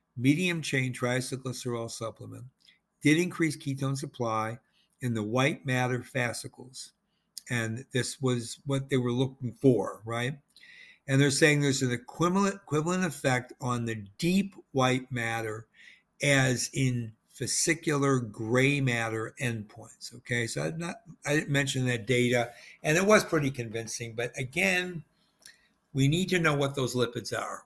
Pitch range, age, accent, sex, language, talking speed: 120-150 Hz, 60-79, American, male, English, 135 wpm